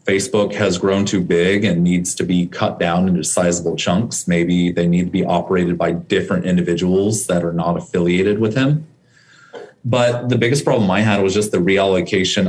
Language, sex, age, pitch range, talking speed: English, male, 30-49, 95-115 Hz, 185 wpm